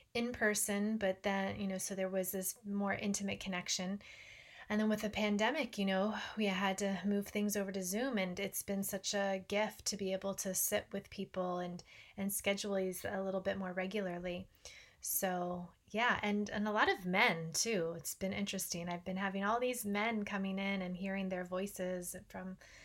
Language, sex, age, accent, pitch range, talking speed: English, female, 20-39, American, 190-215 Hz, 195 wpm